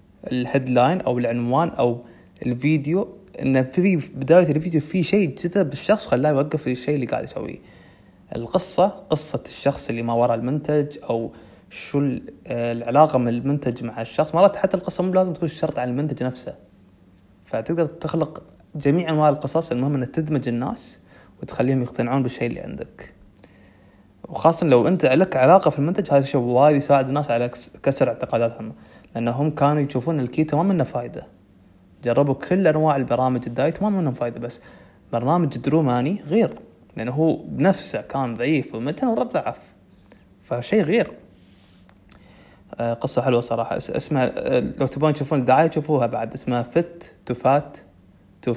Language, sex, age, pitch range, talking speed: Arabic, male, 20-39, 115-155 Hz, 145 wpm